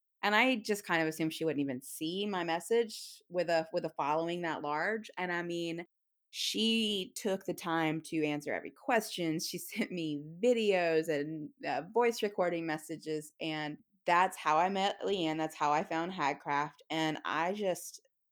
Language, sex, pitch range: English, female, 155-185 Hz